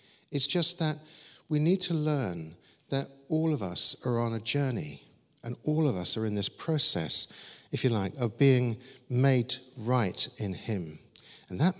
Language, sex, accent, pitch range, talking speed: English, male, British, 110-150 Hz, 175 wpm